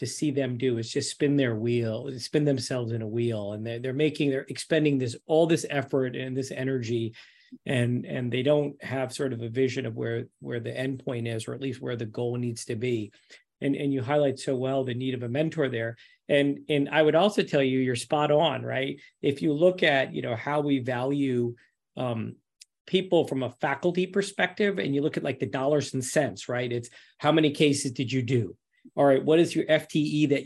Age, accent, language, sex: 40-59, American, English, male